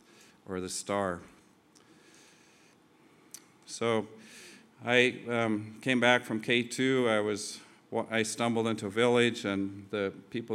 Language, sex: English, male